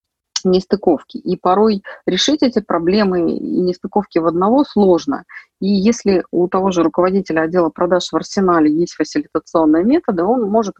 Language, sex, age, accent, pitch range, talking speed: Russian, female, 30-49, native, 160-235 Hz, 145 wpm